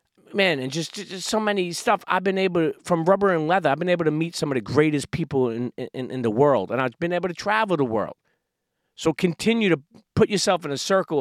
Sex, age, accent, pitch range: male, 40-59, American, 140-180 Hz